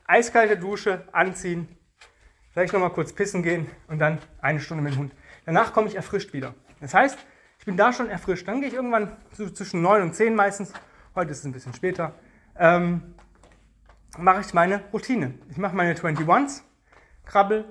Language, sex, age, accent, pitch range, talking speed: German, male, 30-49, German, 155-200 Hz, 180 wpm